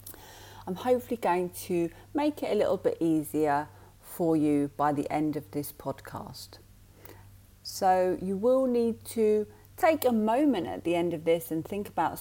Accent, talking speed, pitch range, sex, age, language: British, 165 wpm, 135-180 Hz, female, 40-59, English